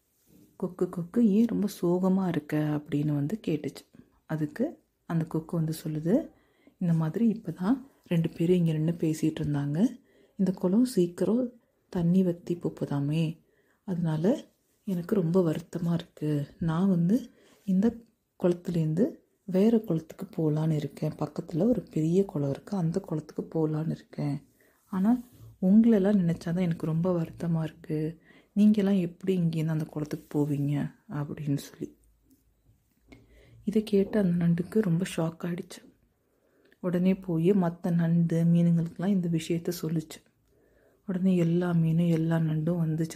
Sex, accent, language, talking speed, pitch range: female, native, Tamil, 125 wpm, 160-190 Hz